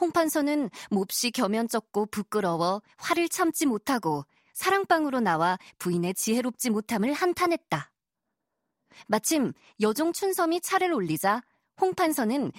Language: Korean